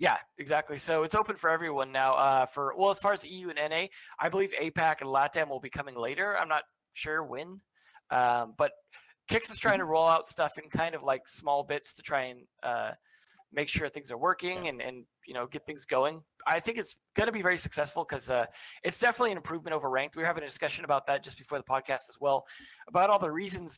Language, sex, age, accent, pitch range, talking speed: English, male, 20-39, American, 145-180 Hz, 235 wpm